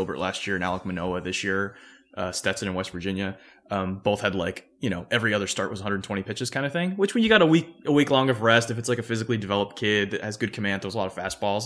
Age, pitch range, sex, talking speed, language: 20-39, 100-130 Hz, male, 280 wpm, English